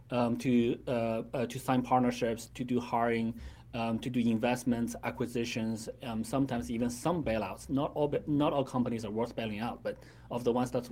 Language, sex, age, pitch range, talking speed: English, male, 30-49, 120-145 Hz, 190 wpm